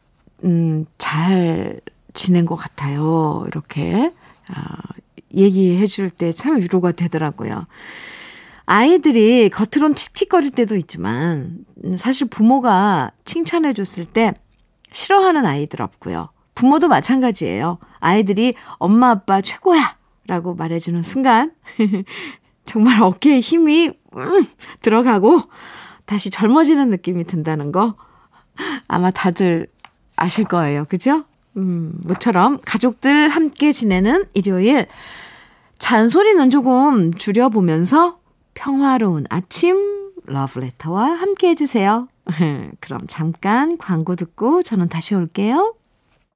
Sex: female